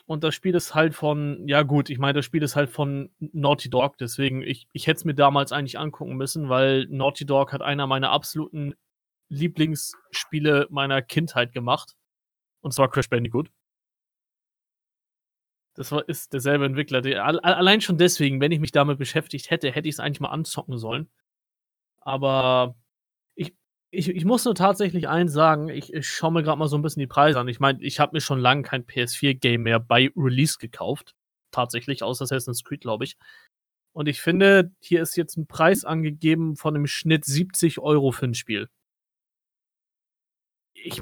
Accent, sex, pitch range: German, male, 135-160 Hz